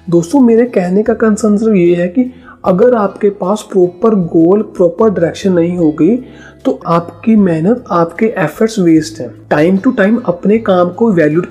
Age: 40-59